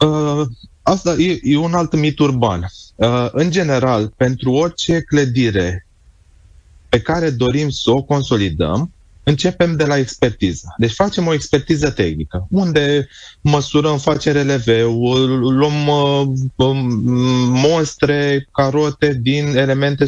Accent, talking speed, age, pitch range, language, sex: native, 120 wpm, 20-39, 115-150 Hz, Romanian, male